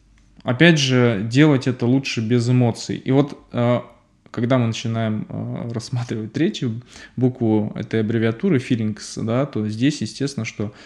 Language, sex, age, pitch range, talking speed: Russian, male, 20-39, 110-135 Hz, 115 wpm